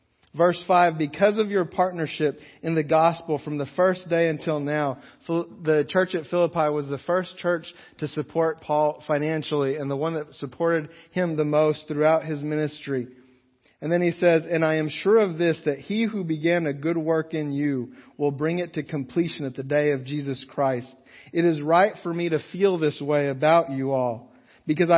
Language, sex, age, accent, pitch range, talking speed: English, male, 40-59, American, 140-170 Hz, 195 wpm